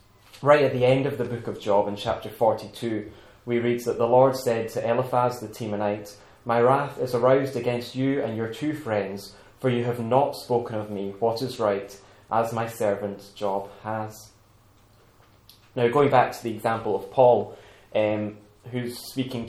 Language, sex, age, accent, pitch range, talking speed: English, male, 10-29, British, 105-125 Hz, 180 wpm